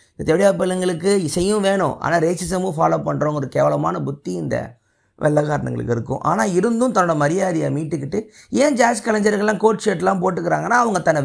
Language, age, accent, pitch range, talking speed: Tamil, 30-49, native, 145-205 Hz, 140 wpm